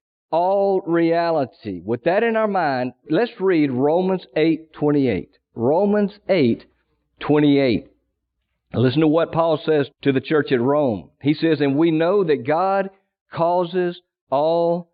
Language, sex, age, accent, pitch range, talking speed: English, male, 50-69, American, 135-190 Hz, 140 wpm